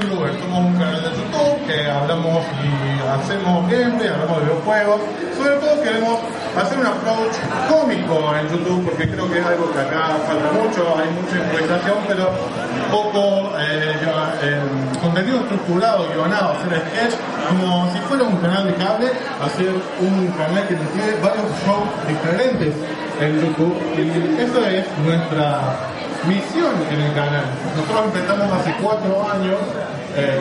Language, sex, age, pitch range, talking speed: Spanish, male, 20-39, 160-200 Hz, 145 wpm